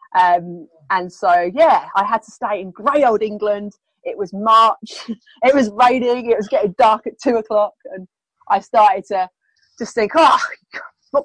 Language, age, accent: English, 30-49, British